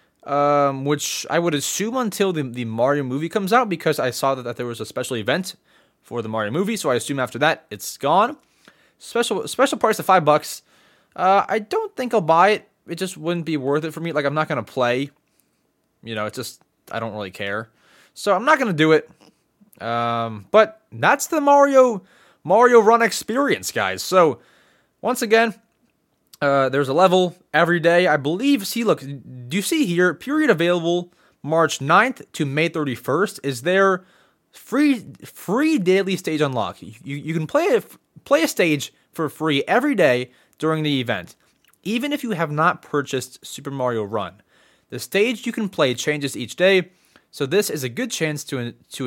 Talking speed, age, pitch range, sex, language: 190 wpm, 20-39, 135-205 Hz, male, English